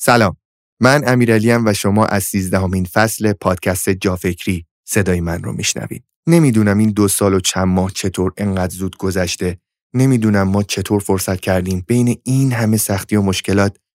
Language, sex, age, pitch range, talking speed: Persian, male, 30-49, 95-110 Hz, 155 wpm